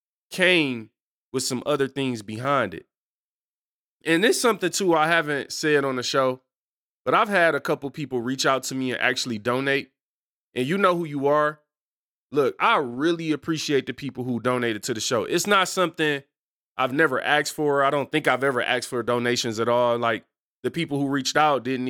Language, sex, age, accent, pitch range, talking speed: English, male, 20-39, American, 125-155 Hz, 195 wpm